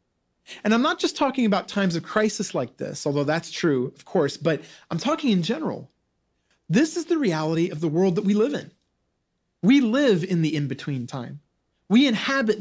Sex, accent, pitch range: male, American, 150-220 Hz